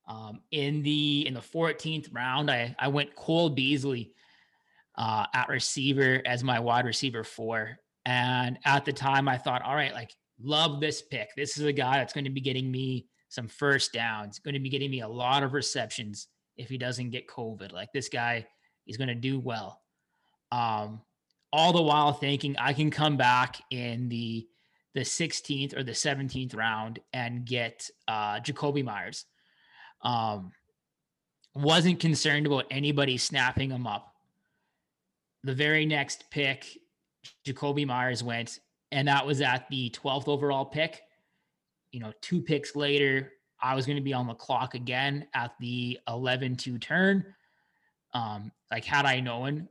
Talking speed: 165 wpm